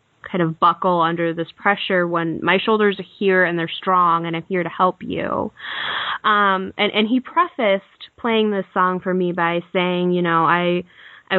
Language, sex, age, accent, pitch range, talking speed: English, female, 10-29, American, 170-200 Hz, 190 wpm